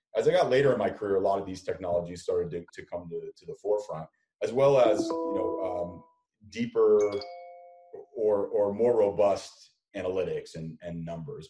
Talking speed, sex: 185 wpm, male